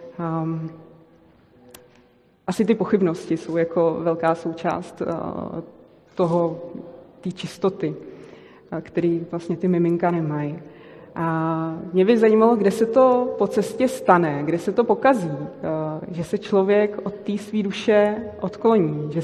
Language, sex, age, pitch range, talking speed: Czech, female, 20-39, 170-205 Hz, 130 wpm